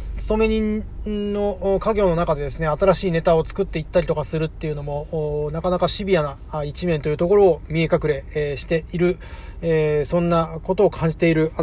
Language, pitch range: Japanese, 110-165 Hz